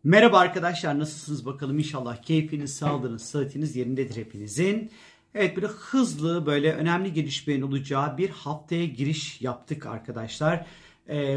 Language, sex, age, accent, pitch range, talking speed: Turkish, male, 40-59, native, 135-165 Hz, 120 wpm